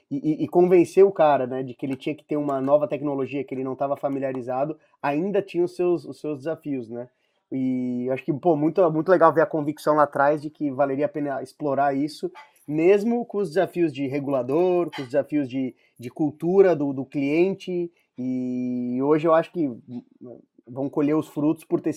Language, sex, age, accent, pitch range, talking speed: Portuguese, male, 20-39, Brazilian, 140-170 Hz, 200 wpm